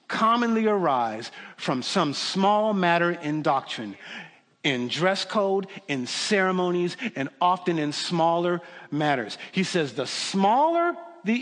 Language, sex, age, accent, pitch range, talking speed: English, male, 50-69, American, 135-190 Hz, 120 wpm